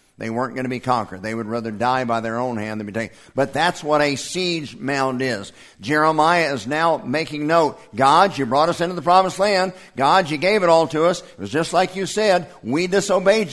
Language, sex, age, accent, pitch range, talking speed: English, male, 50-69, American, 140-185 Hz, 230 wpm